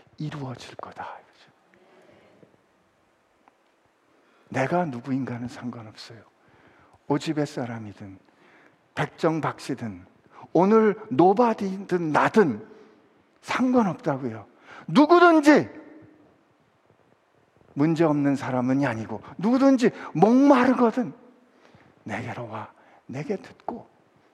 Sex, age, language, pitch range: male, 50-69, Korean, 140-225 Hz